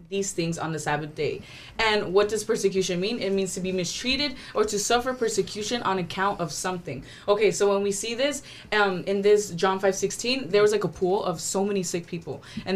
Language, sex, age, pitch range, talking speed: English, female, 20-39, 165-205 Hz, 220 wpm